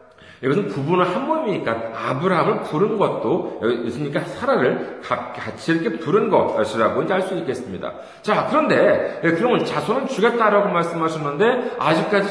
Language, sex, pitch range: Korean, male, 160-230 Hz